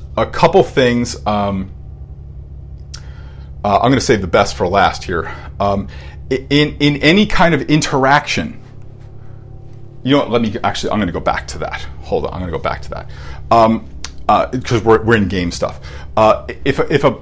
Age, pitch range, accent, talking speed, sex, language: 40-59, 100-135 Hz, American, 190 wpm, male, English